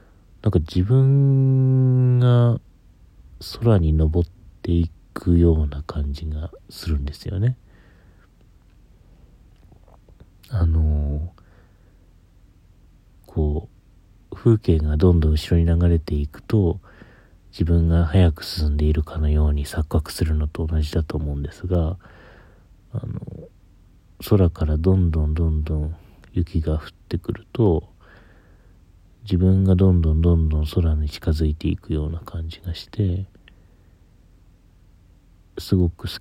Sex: male